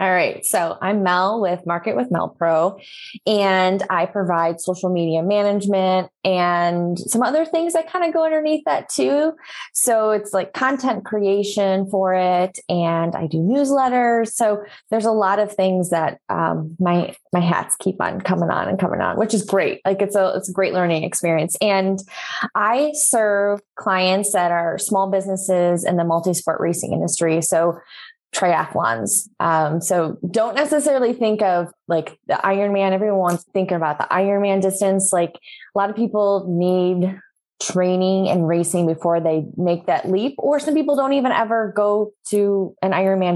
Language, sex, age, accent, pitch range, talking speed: English, female, 20-39, American, 175-210 Hz, 170 wpm